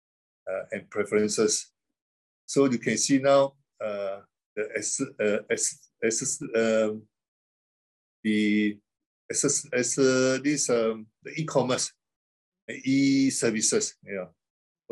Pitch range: 105-140 Hz